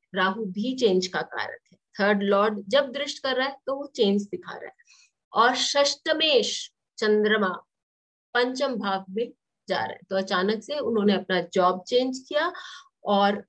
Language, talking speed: English, 165 wpm